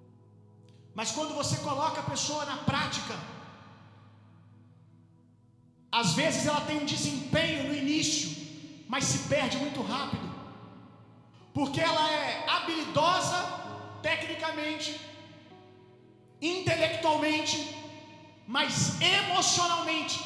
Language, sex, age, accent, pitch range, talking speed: Gujarati, male, 40-59, Brazilian, 225-350 Hz, 85 wpm